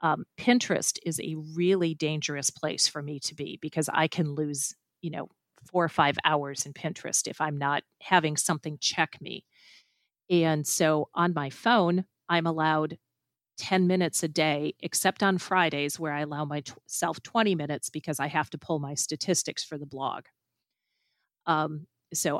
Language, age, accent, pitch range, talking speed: English, 40-59, American, 150-180 Hz, 165 wpm